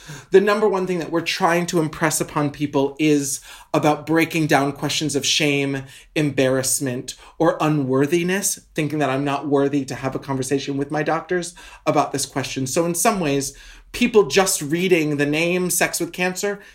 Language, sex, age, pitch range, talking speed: English, male, 30-49, 145-185 Hz, 170 wpm